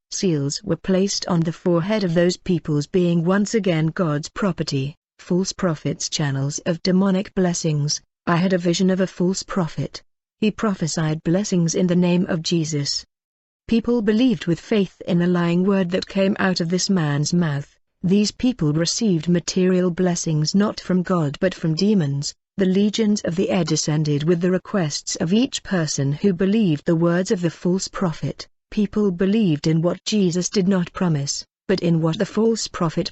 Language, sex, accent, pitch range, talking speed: English, female, British, 165-190 Hz, 175 wpm